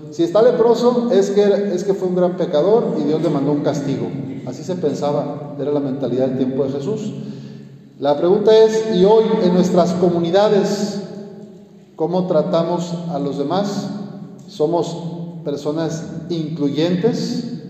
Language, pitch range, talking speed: Spanish, 145-195 Hz, 145 wpm